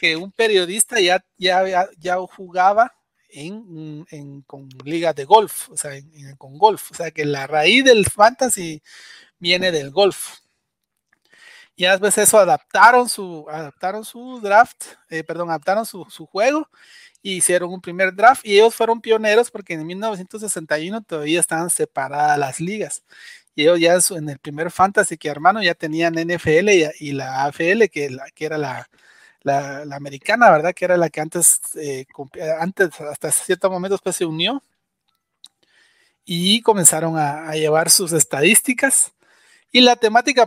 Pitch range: 155-215 Hz